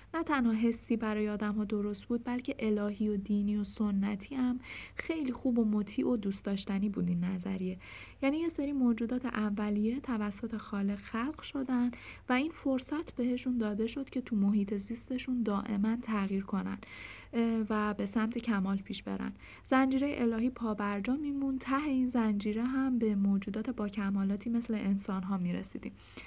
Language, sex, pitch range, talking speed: Persian, female, 200-250 Hz, 160 wpm